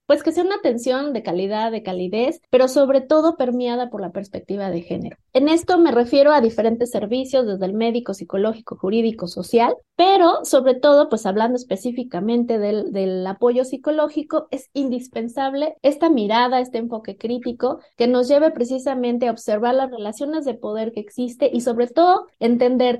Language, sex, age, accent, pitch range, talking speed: Spanish, female, 30-49, Mexican, 220-270 Hz, 165 wpm